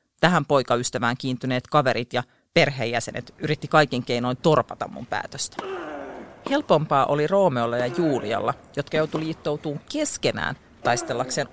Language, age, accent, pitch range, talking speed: Finnish, 40-59, native, 125-180 Hz, 115 wpm